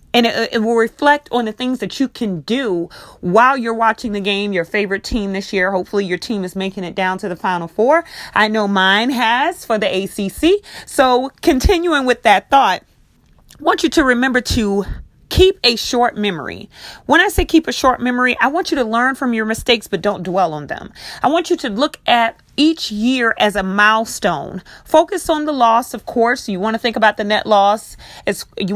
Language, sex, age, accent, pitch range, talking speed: English, female, 30-49, American, 205-265 Hz, 210 wpm